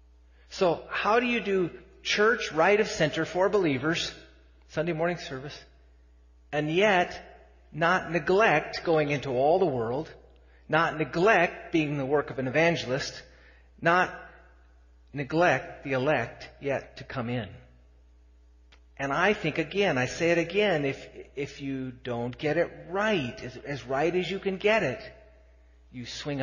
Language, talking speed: English, 145 wpm